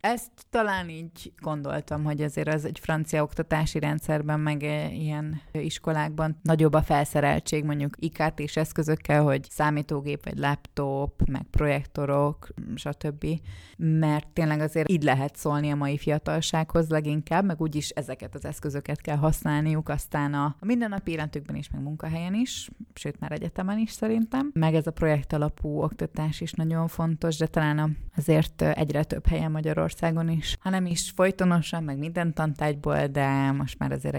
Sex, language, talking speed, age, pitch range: female, Hungarian, 150 wpm, 20-39, 145-165 Hz